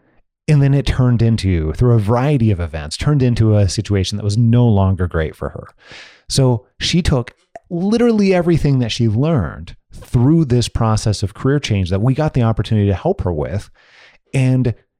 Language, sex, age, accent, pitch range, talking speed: English, male, 30-49, American, 100-130 Hz, 180 wpm